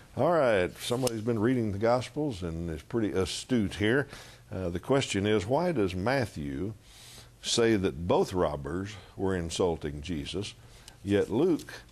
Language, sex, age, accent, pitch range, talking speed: English, male, 60-79, American, 85-110 Hz, 140 wpm